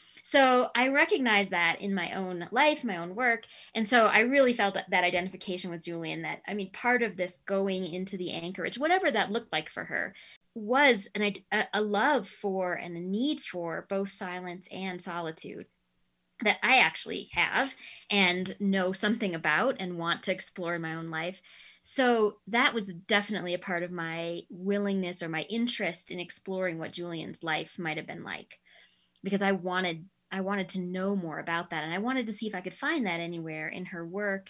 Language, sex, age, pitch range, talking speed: English, female, 20-39, 175-225 Hz, 195 wpm